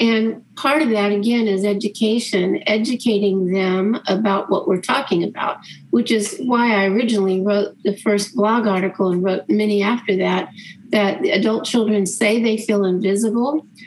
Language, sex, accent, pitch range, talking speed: English, female, American, 195-230 Hz, 155 wpm